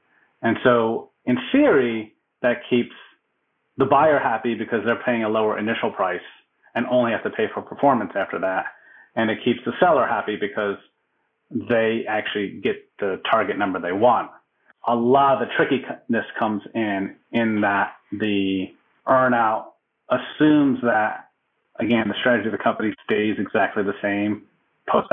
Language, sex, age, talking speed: English, male, 30-49, 155 wpm